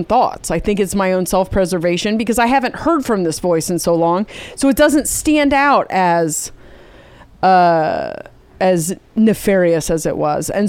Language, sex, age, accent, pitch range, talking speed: English, female, 30-49, American, 175-210 Hz, 170 wpm